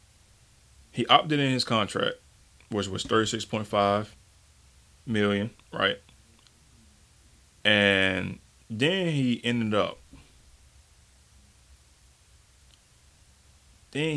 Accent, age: American, 20-39